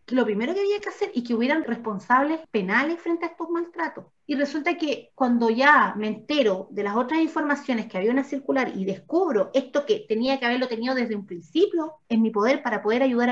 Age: 30-49